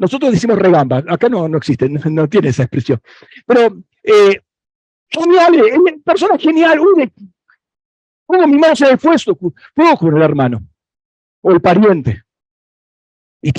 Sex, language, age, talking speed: male, Spanish, 50-69, 130 wpm